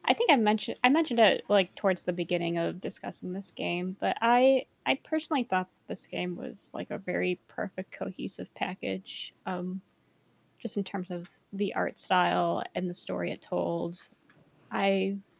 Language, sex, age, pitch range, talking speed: English, female, 20-39, 170-200 Hz, 170 wpm